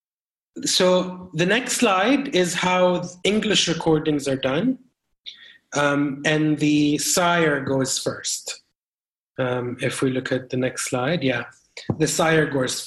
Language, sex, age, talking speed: English, male, 30-49, 135 wpm